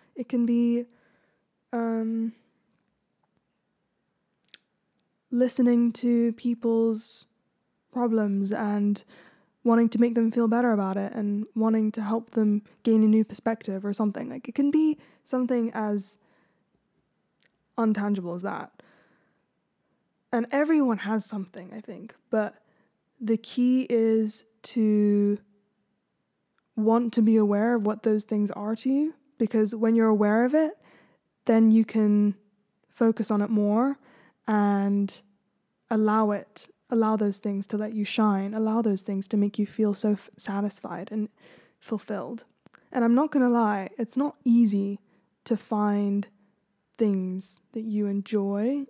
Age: 10-29